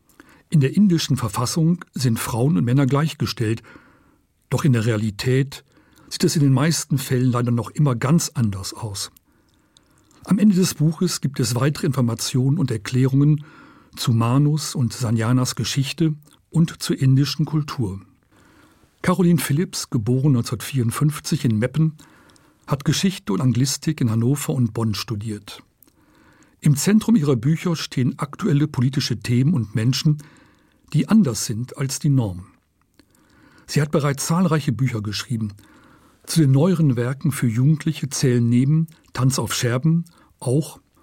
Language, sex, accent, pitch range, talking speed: German, male, German, 120-155 Hz, 135 wpm